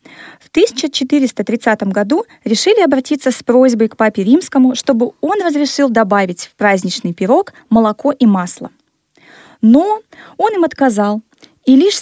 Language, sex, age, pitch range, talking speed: Russian, female, 20-39, 210-275 Hz, 130 wpm